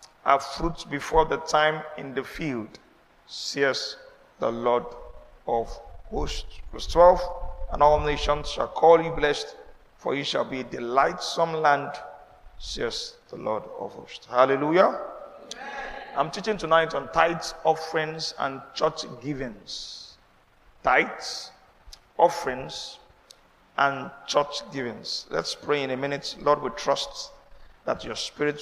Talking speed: 125 wpm